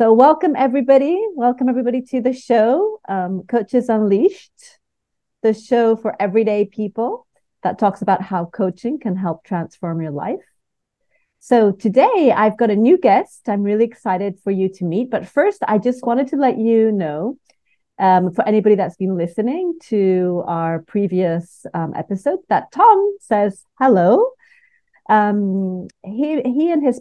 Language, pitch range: English, 185-255 Hz